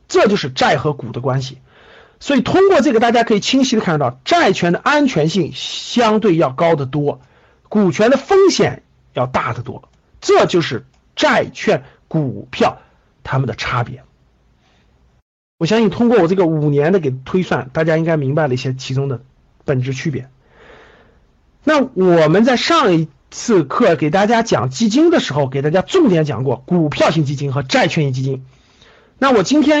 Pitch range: 135-225 Hz